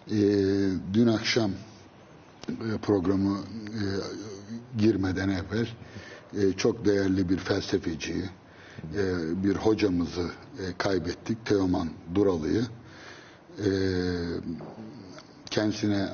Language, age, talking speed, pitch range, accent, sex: Turkish, 60-79, 80 wpm, 95-110 Hz, native, male